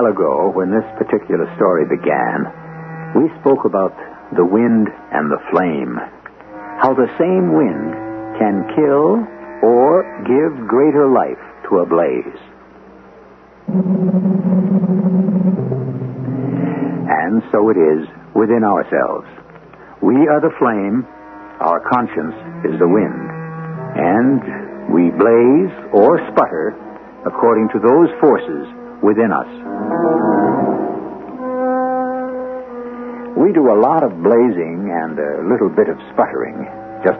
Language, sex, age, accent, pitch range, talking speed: English, male, 60-79, American, 105-175 Hz, 105 wpm